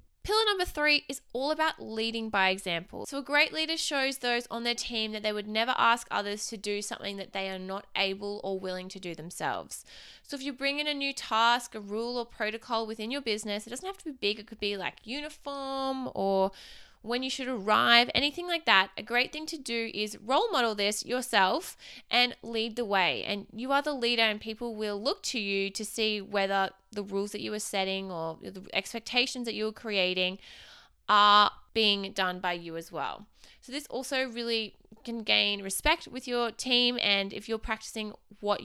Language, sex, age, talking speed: English, female, 20-39, 205 wpm